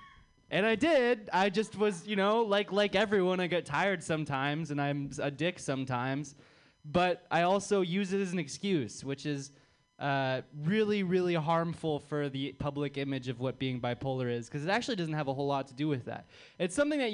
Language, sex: English, male